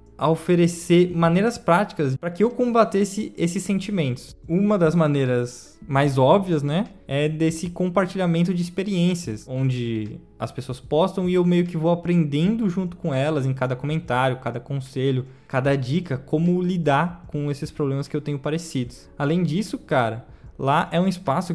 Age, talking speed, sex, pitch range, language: 20-39, 160 wpm, male, 145-180 Hz, Portuguese